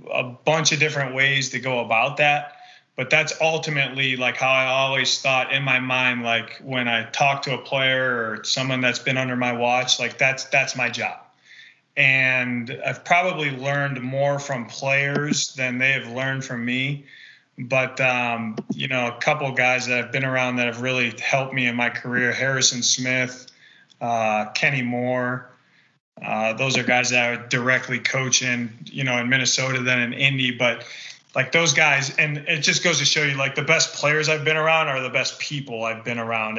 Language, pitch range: English, 125-145 Hz